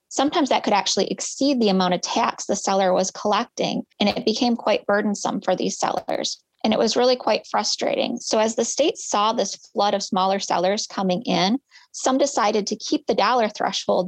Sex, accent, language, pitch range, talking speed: female, American, English, 185-240 Hz, 195 wpm